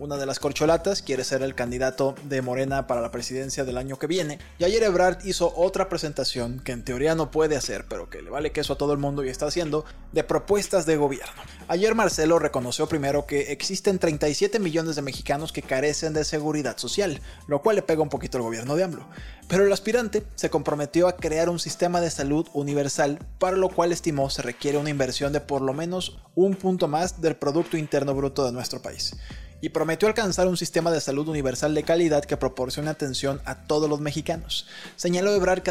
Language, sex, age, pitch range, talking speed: Spanish, male, 20-39, 140-175 Hz, 210 wpm